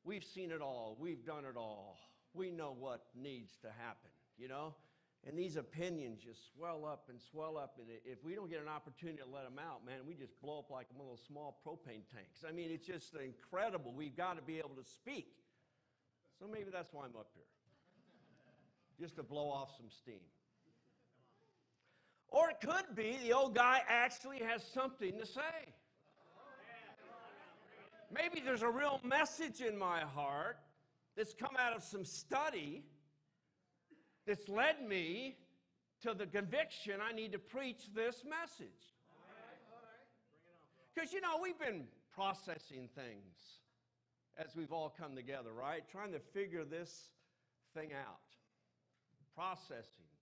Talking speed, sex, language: 155 wpm, male, English